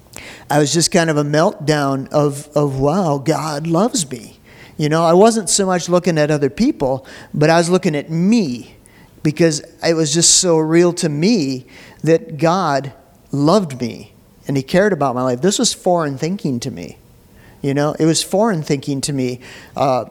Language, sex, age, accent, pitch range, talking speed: English, male, 50-69, American, 145-175 Hz, 185 wpm